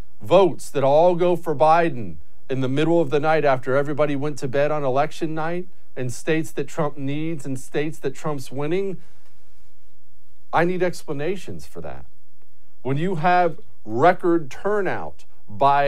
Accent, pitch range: American, 135-180 Hz